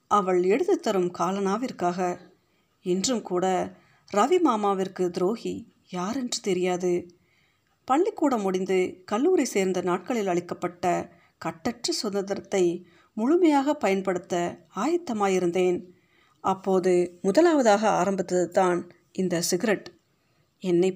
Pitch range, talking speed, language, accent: 180-220 Hz, 85 wpm, Tamil, native